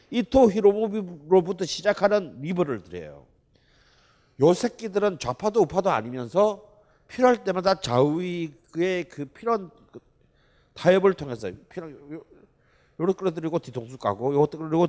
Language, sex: Korean, male